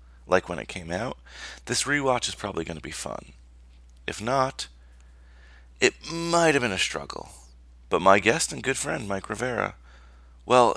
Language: English